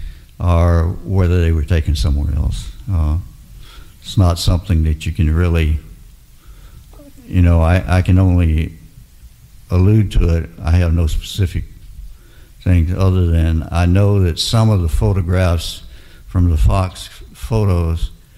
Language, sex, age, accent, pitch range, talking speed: English, male, 60-79, American, 85-100 Hz, 135 wpm